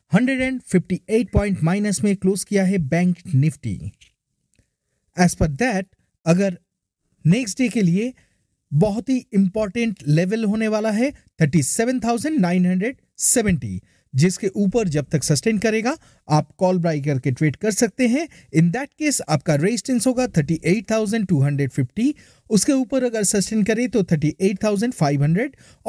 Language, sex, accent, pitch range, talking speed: Hindi, male, native, 170-235 Hz, 120 wpm